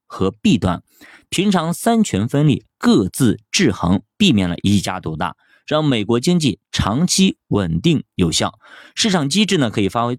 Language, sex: Chinese, male